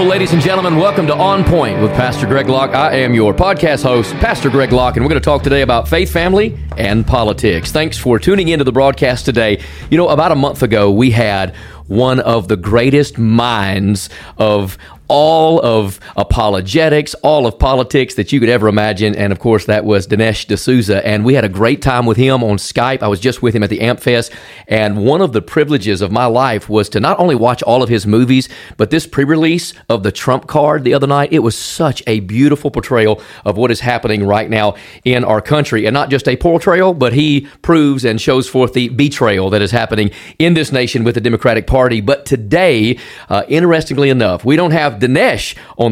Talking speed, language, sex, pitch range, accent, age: 215 wpm, English, male, 110-145 Hz, American, 40-59